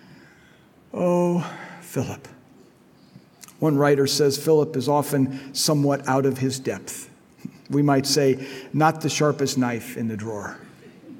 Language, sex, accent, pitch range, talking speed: English, male, American, 135-185 Hz, 125 wpm